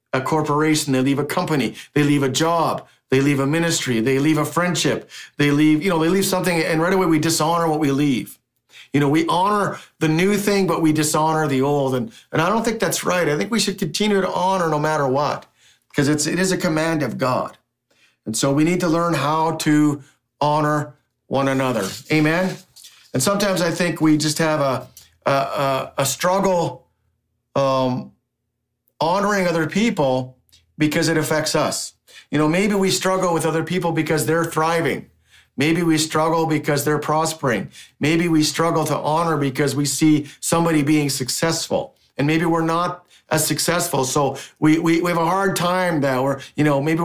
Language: English